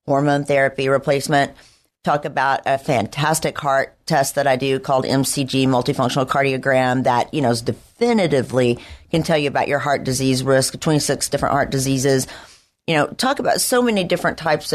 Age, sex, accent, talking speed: 40-59, female, American, 165 wpm